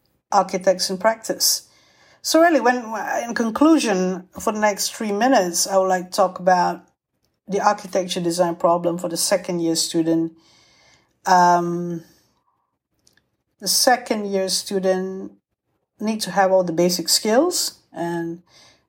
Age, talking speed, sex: 60-79, 130 wpm, female